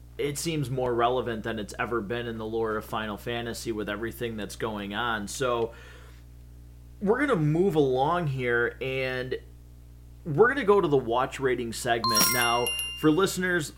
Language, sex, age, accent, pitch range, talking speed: English, male, 30-49, American, 115-150 Hz, 170 wpm